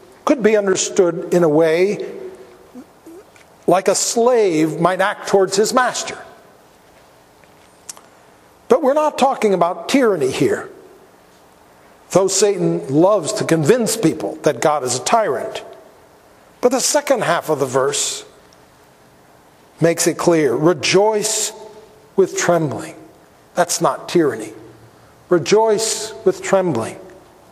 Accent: American